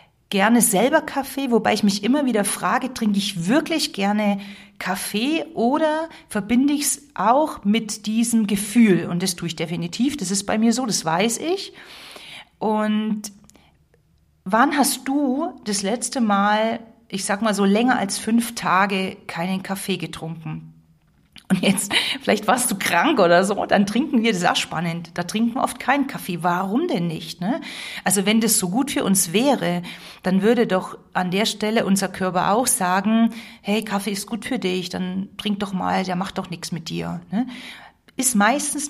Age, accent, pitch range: 40-59, German, 180-235 Hz